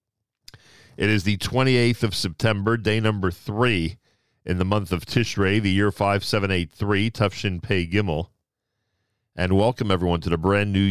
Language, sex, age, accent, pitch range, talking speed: English, male, 40-59, American, 90-110 Hz, 150 wpm